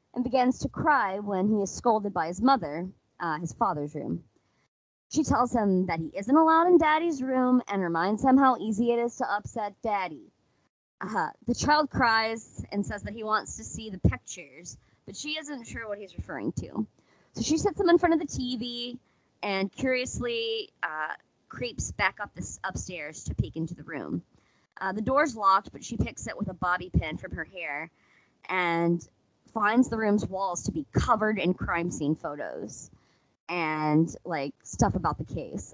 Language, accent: English, American